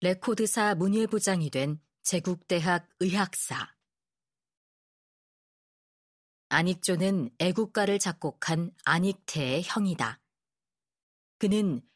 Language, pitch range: Korean, 155-210 Hz